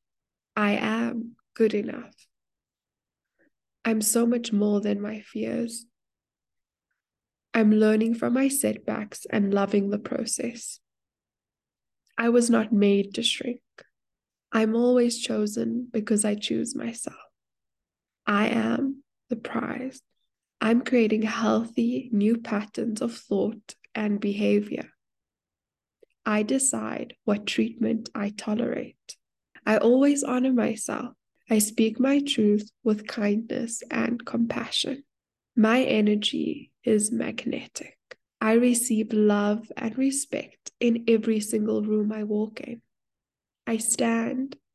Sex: female